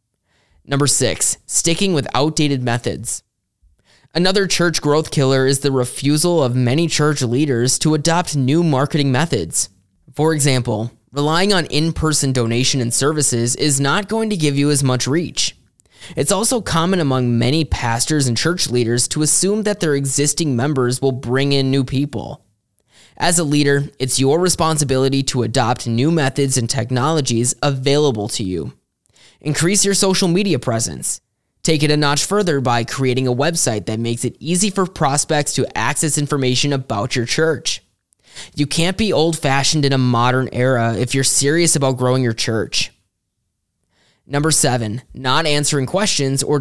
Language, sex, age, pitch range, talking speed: English, male, 20-39, 125-160 Hz, 155 wpm